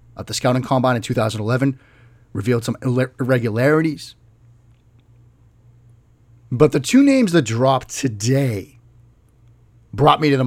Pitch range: 115-150 Hz